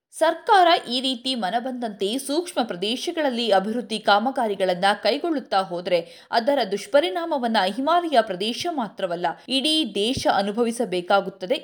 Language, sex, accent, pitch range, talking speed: Kannada, female, native, 200-285 Hz, 95 wpm